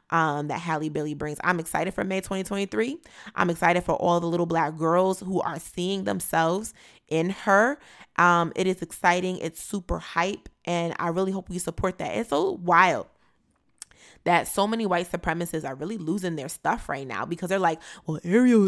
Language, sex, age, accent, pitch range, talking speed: English, female, 20-39, American, 160-195 Hz, 185 wpm